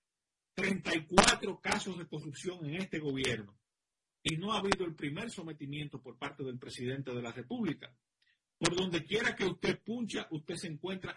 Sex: male